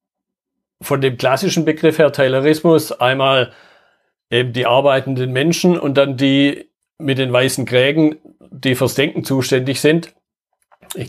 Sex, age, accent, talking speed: male, 50-69, German, 130 wpm